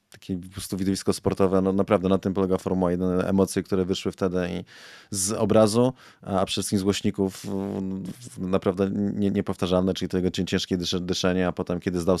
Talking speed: 165 wpm